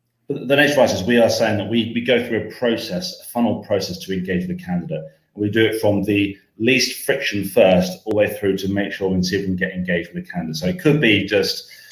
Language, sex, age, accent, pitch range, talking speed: English, male, 30-49, British, 95-130 Hz, 260 wpm